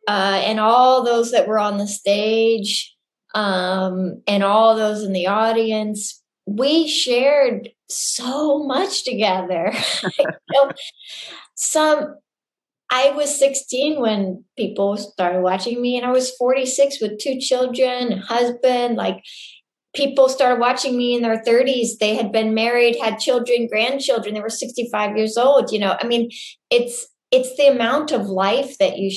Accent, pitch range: American, 200-260 Hz